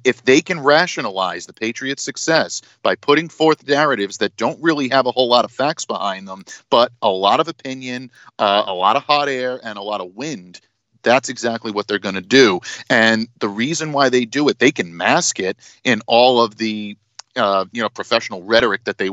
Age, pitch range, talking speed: 40-59, 105-130 Hz, 210 wpm